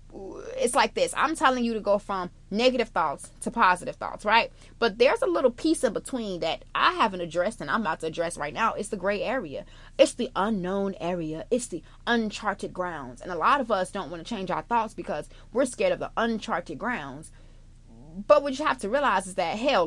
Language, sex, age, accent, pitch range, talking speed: English, female, 30-49, American, 190-265 Hz, 220 wpm